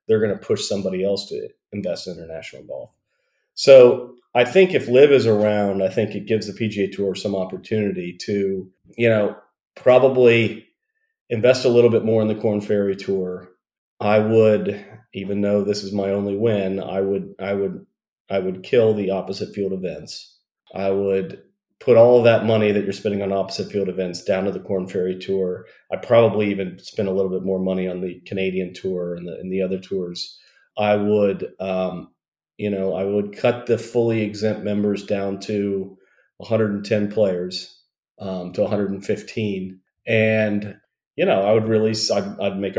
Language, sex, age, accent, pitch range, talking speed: English, male, 40-59, American, 95-115 Hz, 180 wpm